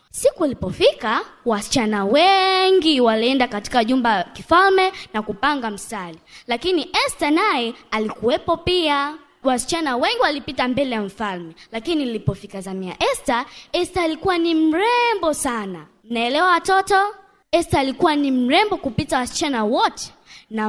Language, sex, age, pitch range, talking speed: Swahili, female, 20-39, 225-330 Hz, 120 wpm